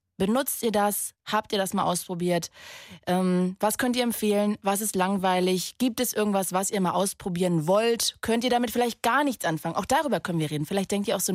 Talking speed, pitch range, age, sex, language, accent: 215 wpm, 175-240 Hz, 20-39, female, German, German